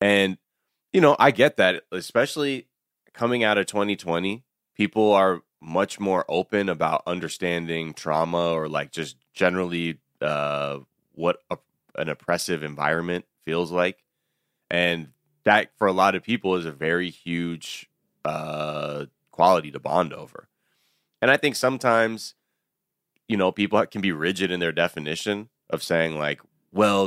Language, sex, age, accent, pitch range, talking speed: English, male, 20-39, American, 80-100 Hz, 140 wpm